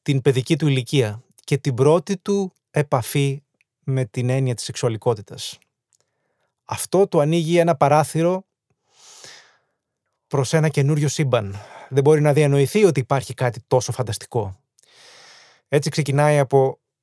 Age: 20-39